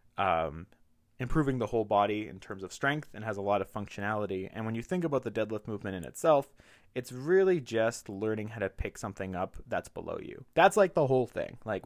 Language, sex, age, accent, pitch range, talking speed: English, male, 20-39, American, 100-125 Hz, 220 wpm